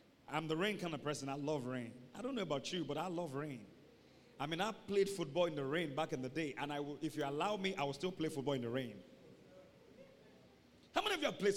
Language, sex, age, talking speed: English, male, 40-59, 265 wpm